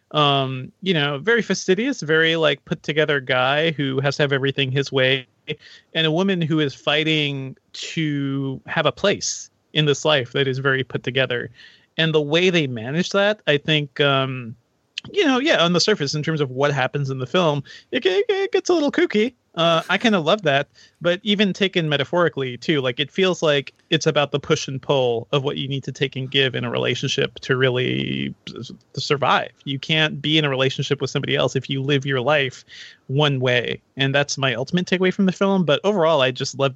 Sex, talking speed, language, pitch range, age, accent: male, 210 wpm, English, 135-165 Hz, 30-49, American